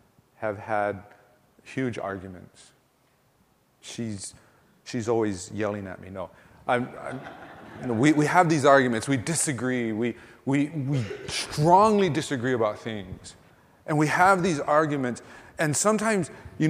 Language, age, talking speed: English, 30-49, 135 wpm